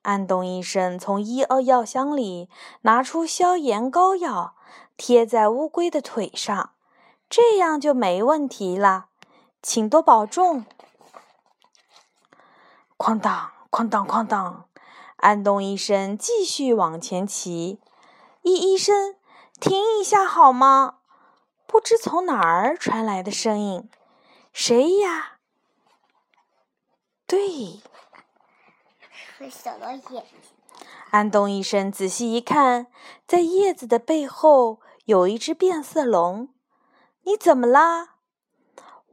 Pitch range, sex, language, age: 210-335 Hz, female, Chinese, 20-39